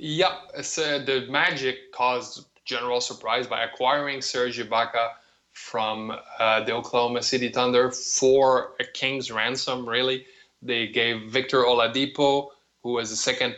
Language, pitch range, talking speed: English, 115-135 Hz, 135 wpm